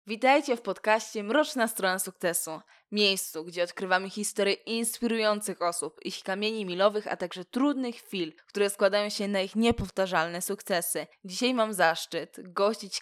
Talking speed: 140 wpm